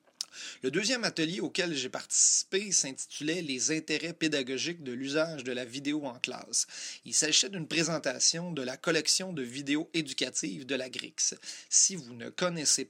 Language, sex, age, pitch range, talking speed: French, male, 30-49, 125-160 Hz, 160 wpm